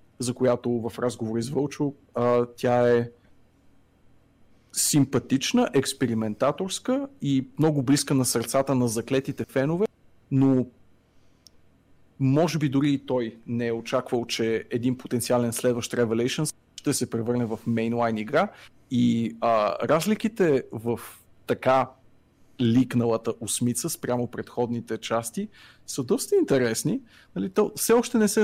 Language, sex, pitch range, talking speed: Bulgarian, male, 115-145 Hz, 120 wpm